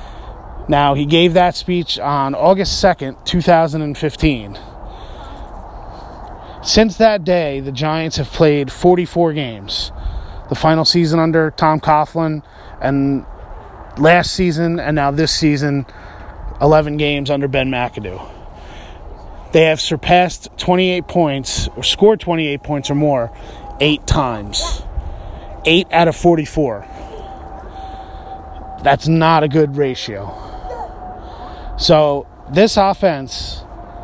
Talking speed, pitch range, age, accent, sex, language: 110 wpm, 105-165 Hz, 30-49, American, male, English